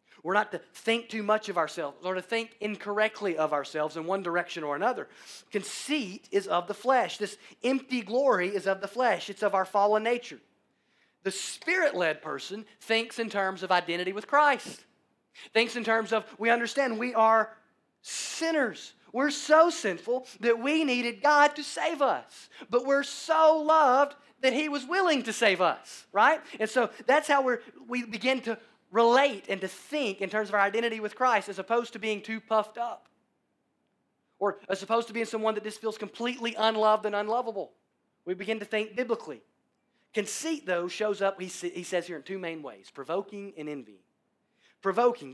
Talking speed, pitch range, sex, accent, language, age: 180 wpm, 190-245 Hz, male, American, English, 30-49